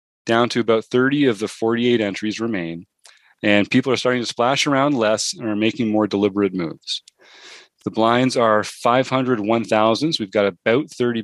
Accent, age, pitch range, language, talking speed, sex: American, 30-49, 105-125 Hz, English, 170 wpm, male